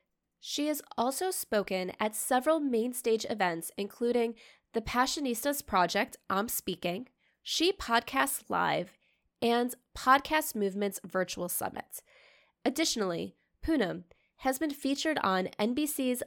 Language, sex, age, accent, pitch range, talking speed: English, female, 20-39, American, 190-260 Hz, 110 wpm